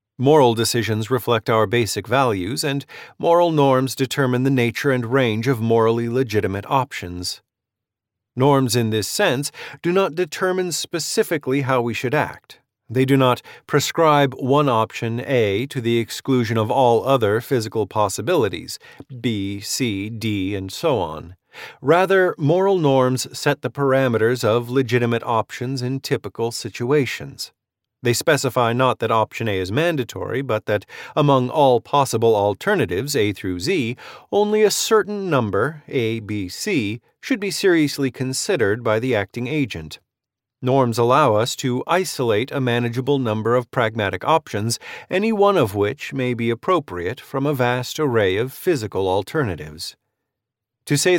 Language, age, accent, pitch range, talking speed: English, 40-59, American, 115-145 Hz, 145 wpm